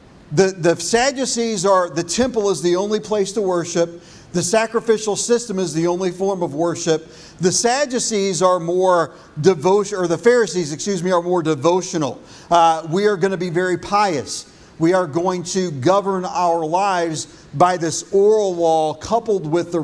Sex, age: male, 40-59